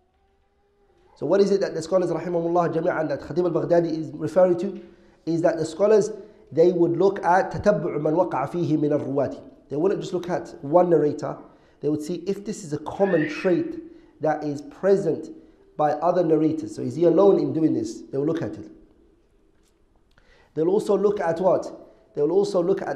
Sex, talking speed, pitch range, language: male, 190 wpm, 165-230 Hz, English